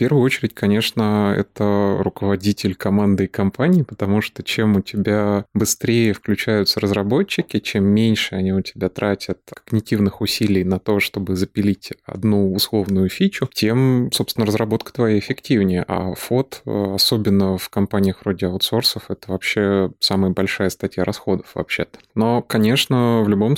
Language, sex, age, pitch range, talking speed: Russian, male, 20-39, 95-110 Hz, 140 wpm